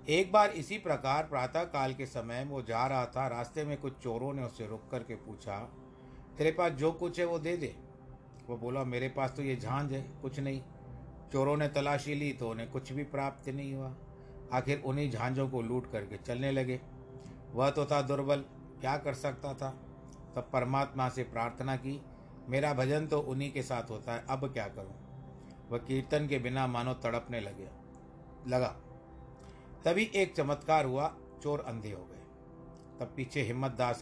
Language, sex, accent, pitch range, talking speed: Hindi, male, native, 120-140 Hz, 180 wpm